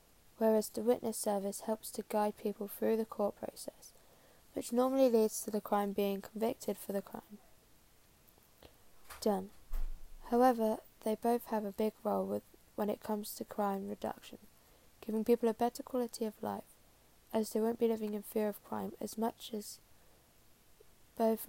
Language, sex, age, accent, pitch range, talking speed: English, female, 10-29, British, 205-230 Hz, 160 wpm